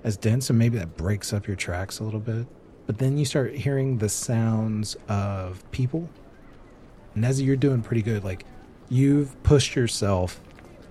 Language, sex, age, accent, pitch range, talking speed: English, male, 40-59, American, 100-130 Hz, 170 wpm